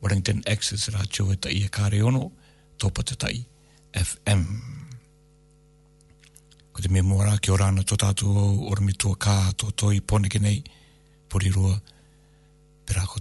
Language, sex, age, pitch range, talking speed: English, male, 60-79, 100-150 Hz, 105 wpm